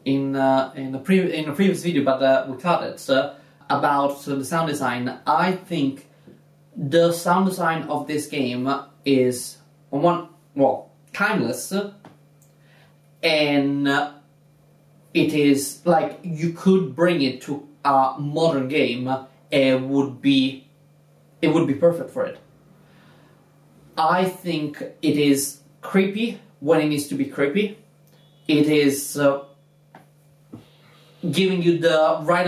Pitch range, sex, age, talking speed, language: 140-165 Hz, male, 30-49, 135 wpm, English